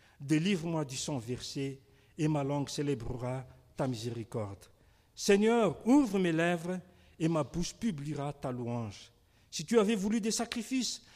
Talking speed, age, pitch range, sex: 140 wpm, 50-69, 125-180 Hz, male